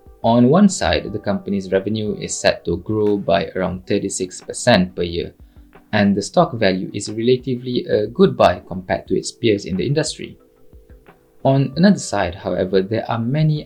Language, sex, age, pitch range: English, male, 20-39, 100-135 Hz